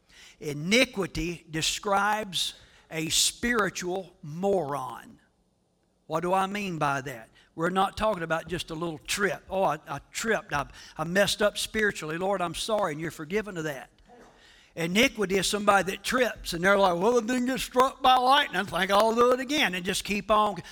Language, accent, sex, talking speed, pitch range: English, American, male, 175 wpm, 185-275 Hz